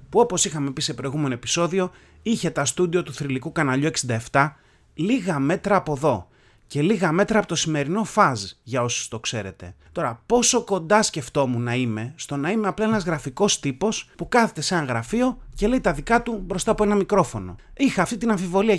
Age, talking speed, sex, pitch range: 30-49, 190 wpm, male, 130-205 Hz